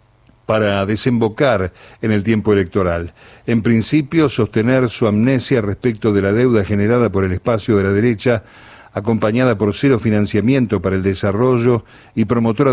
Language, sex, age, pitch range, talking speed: Spanish, male, 50-69, 105-125 Hz, 145 wpm